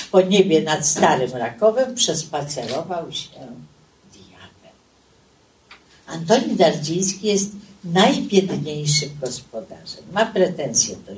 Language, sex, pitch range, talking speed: Polish, female, 155-225 Hz, 85 wpm